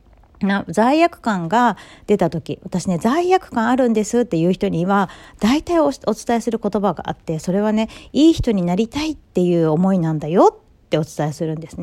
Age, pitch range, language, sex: 40-59, 175-275 Hz, Japanese, female